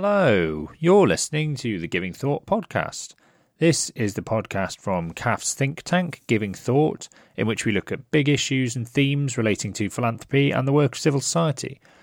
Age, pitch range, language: 30-49, 90-130 Hz, English